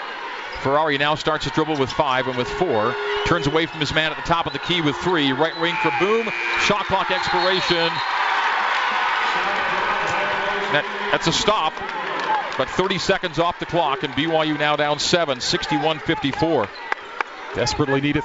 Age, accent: 40-59, American